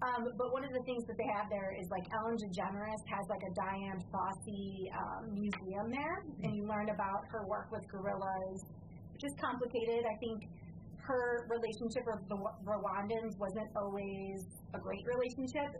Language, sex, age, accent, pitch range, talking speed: English, female, 30-49, American, 195-230 Hz, 170 wpm